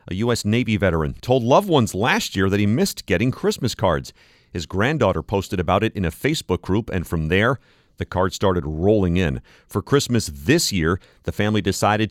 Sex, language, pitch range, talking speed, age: male, English, 90-120 Hz, 195 wpm, 40-59